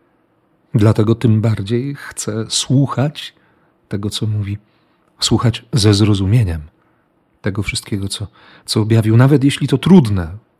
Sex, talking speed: male, 115 wpm